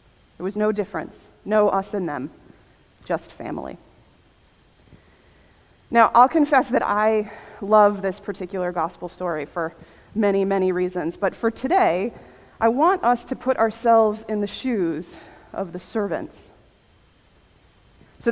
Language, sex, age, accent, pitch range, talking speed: English, female, 30-49, American, 190-230 Hz, 130 wpm